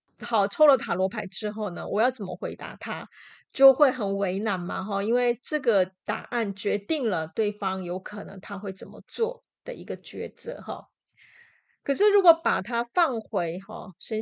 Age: 30-49